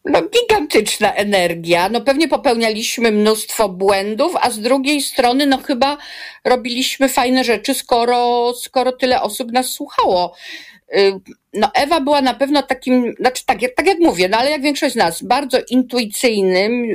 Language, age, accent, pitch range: Polish, 40-59, native, 210-270 Hz